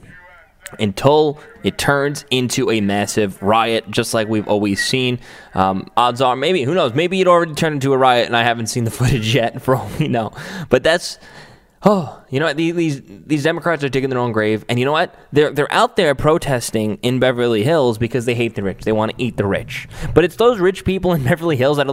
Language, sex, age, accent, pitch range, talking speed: English, male, 10-29, American, 120-160 Hz, 225 wpm